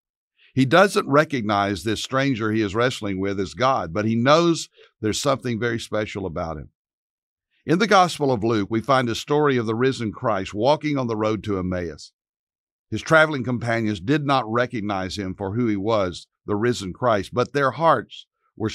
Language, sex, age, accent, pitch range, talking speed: English, male, 60-79, American, 100-130 Hz, 180 wpm